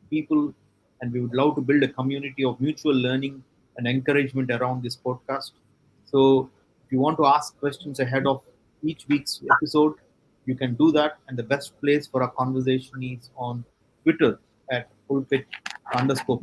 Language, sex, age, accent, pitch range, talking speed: English, male, 30-49, Indian, 120-140 Hz, 170 wpm